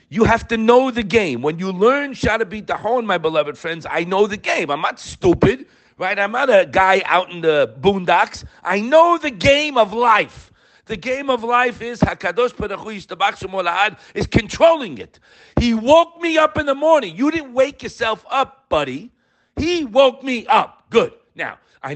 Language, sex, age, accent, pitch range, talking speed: English, male, 50-69, American, 145-235 Hz, 180 wpm